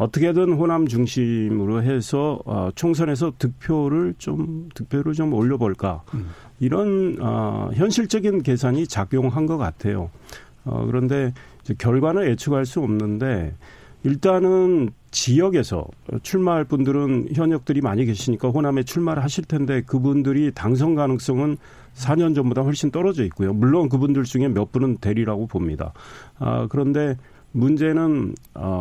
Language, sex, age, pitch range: Korean, male, 40-59, 115-150 Hz